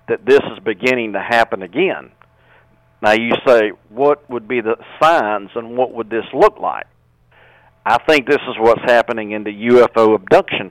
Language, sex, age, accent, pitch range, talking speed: English, male, 50-69, American, 95-135 Hz, 175 wpm